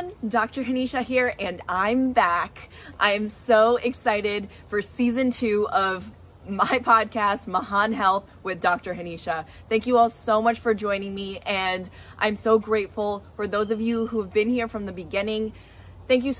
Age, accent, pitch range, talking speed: 20-39, American, 195-235 Hz, 165 wpm